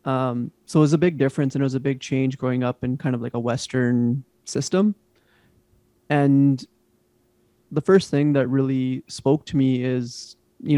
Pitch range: 125-145 Hz